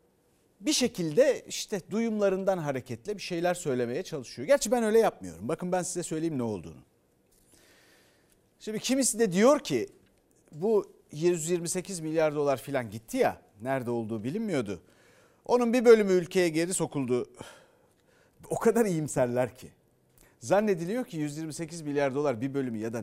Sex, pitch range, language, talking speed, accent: male, 140-220 Hz, Turkish, 140 wpm, native